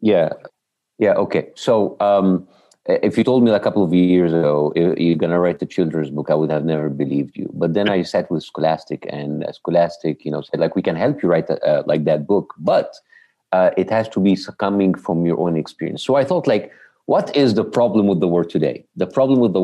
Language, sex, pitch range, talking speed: English, male, 80-100 Hz, 235 wpm